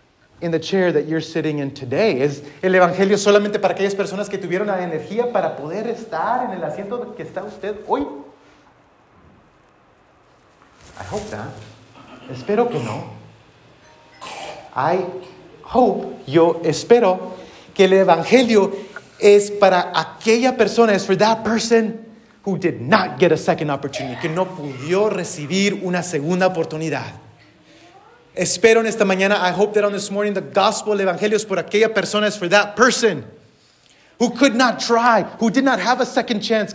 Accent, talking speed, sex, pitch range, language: Mexican, 155 wpm, male, 170-225 Hz, English